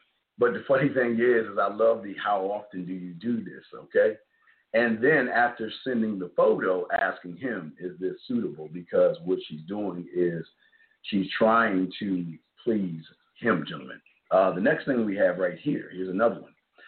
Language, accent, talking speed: English, American, 175 wpm